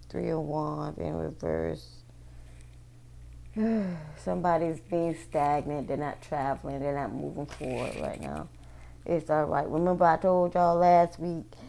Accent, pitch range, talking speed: American, 140-185 Hz, 130 wpm